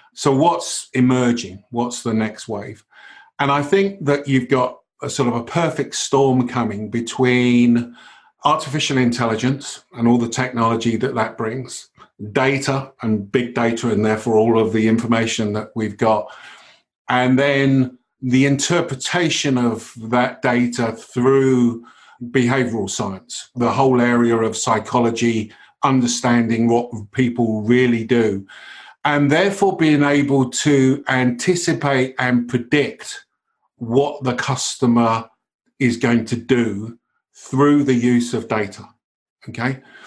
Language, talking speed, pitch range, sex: English, 125 wpm, 115-135 Hz, male